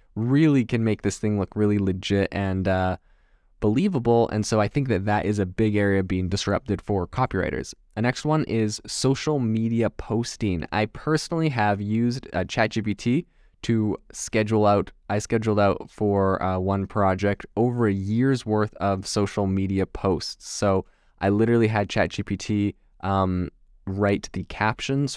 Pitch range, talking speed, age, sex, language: 95-115 Hz, 155 wpm, 20-39, male, English